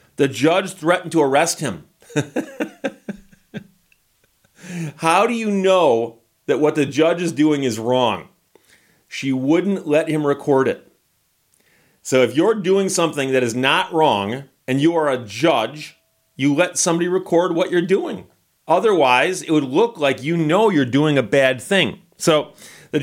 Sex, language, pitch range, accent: male, English, 135-180 Hz, American